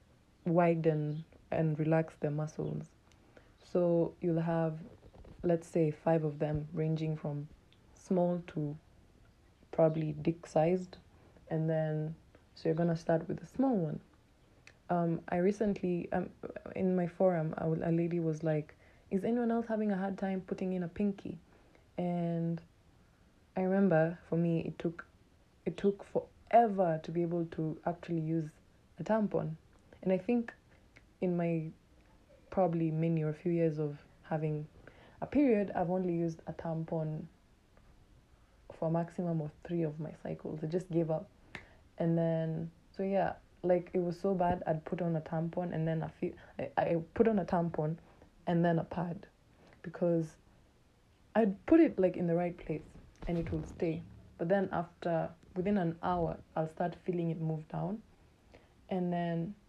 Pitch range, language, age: 160-180 Hz, Swahili, 20-39